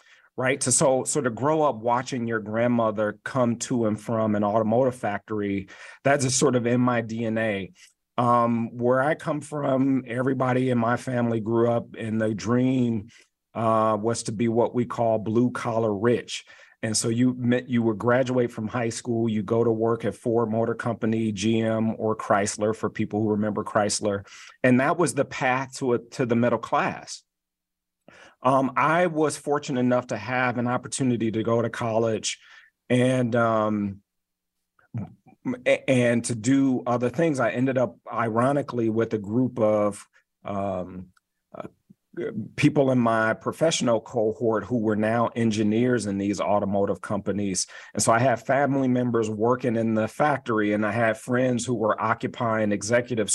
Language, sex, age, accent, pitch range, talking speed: English, male, 40-59, American, 110-125 Hz, 165 wpm